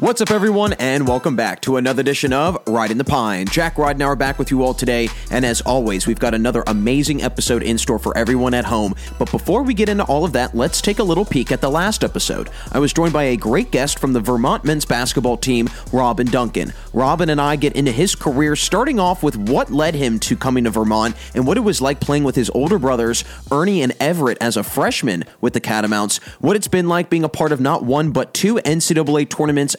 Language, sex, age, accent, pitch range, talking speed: English, male, 30-49, American, 125-155 Hz, 235 wpm